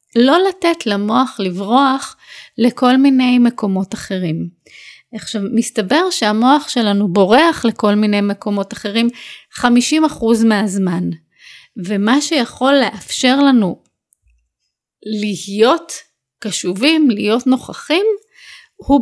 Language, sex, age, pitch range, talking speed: English, female, 30-49, 210-270 Hz, 90 wpm